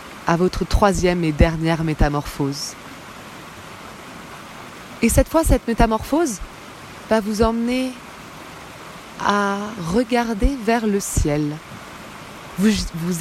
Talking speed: 95 wpm